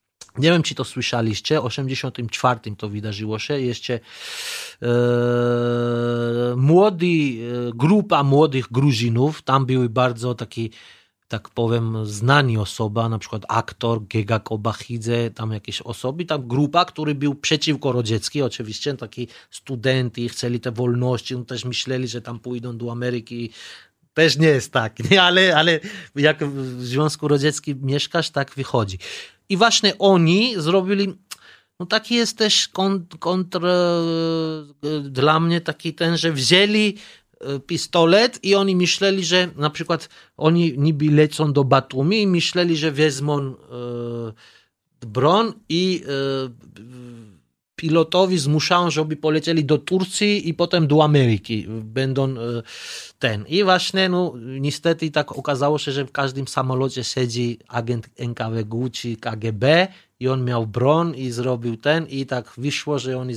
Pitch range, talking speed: 120-160 Hz, 135 wpm